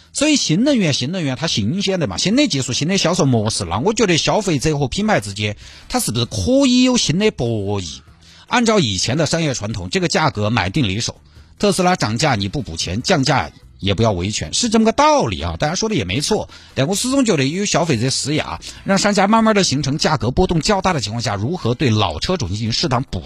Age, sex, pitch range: 50-69, male, 100-165 Hz